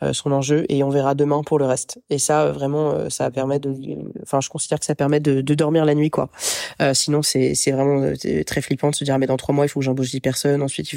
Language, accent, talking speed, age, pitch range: French, French, 275 wpm, 20-39, 135-150 Hz